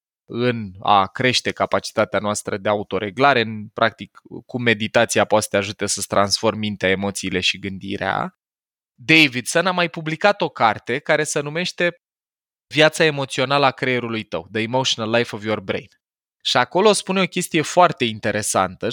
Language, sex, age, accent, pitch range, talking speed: Romanian, male, 20-39, native, 110-150 Hz, 150 wpm